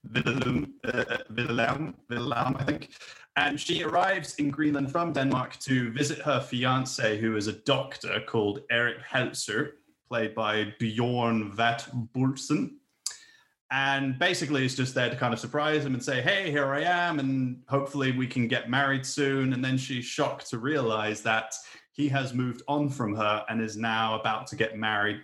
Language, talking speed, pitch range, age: English, 170 wpm, 110-140 Hz, 20-39